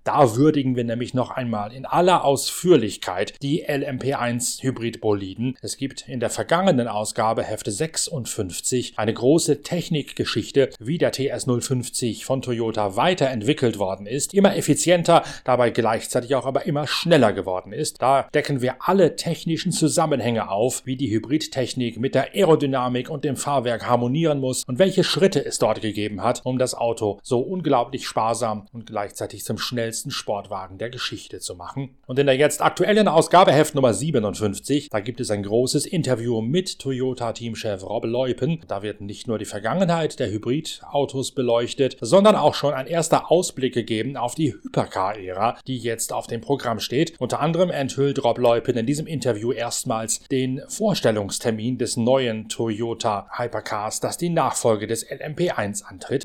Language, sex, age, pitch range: German, male, 30-49, 115-145 Hz